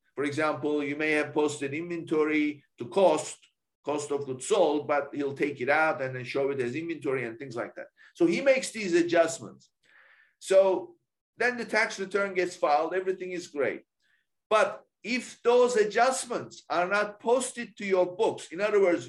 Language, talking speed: English, 175 wpm